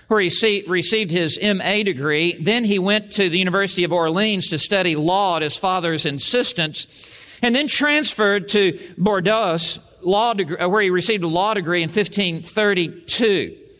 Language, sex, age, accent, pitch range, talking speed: English, male, 50-69, American, 165-210 Hz, 150 wpm